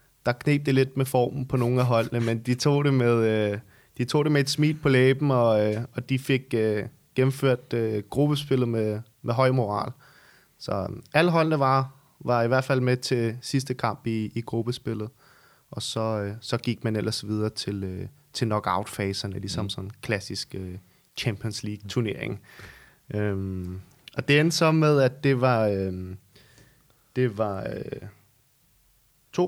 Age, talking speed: 20-39, 170 wpm